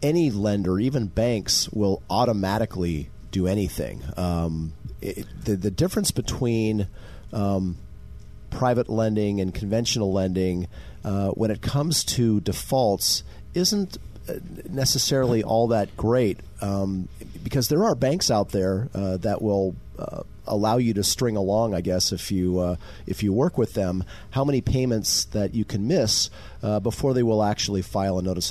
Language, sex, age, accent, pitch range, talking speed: English, male, 40-59, American, 95-120 Hz, 150 wpm